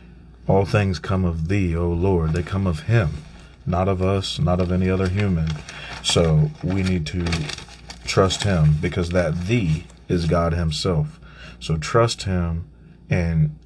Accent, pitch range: American, 80-95 Hz